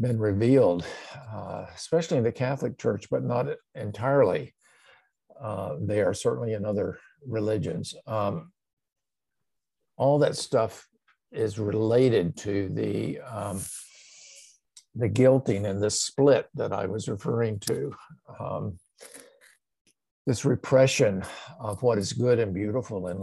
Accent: American